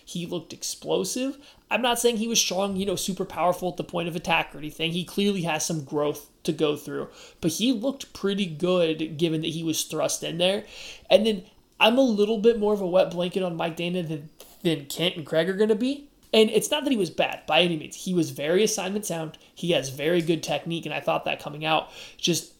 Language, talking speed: English, 235 wpm